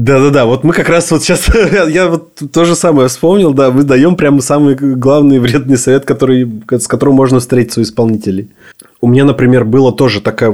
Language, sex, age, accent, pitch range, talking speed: Russian, male, 20-39, native, 120-155 Hz, 195 wpm